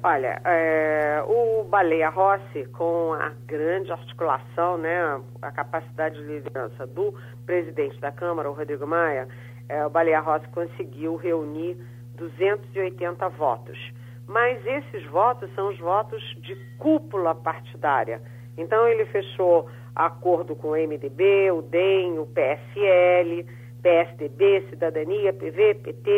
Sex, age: female, 50-69